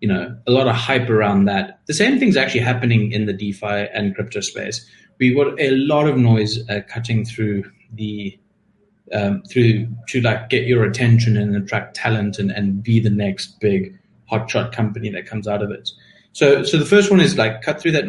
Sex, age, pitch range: male, 30-49, 105-125 Hz